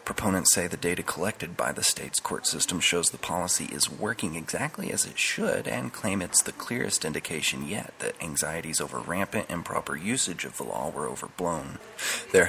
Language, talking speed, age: English, 185 wpm, 30-49